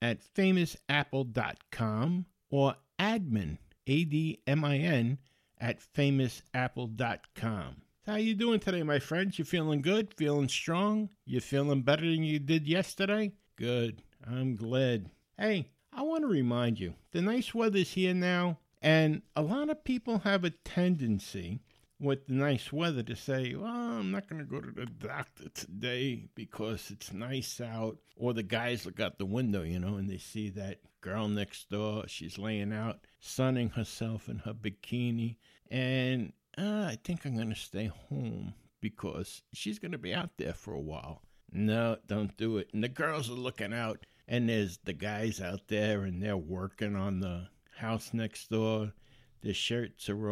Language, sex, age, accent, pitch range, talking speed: English, male, 60-79, American, 105-155 Hz, 165 wpm